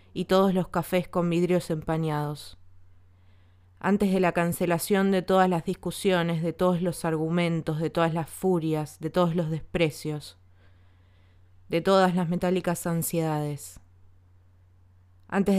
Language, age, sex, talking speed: Spanish, 20-39, female, 125 wpm